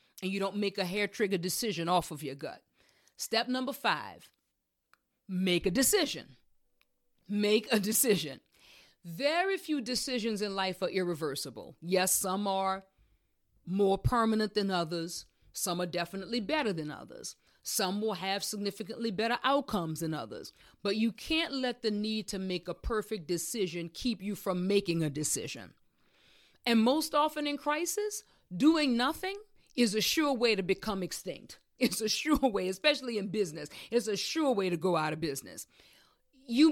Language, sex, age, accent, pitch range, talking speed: English, female, 40-59, American, 185-245 Hz, 160 wpm